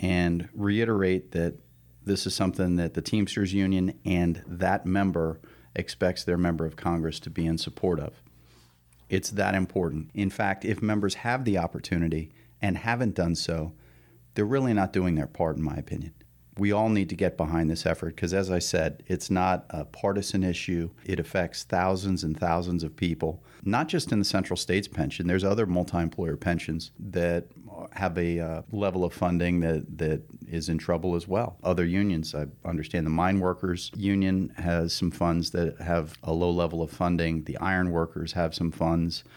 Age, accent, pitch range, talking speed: 40-59, American, 85-95 Hz, 180 wpm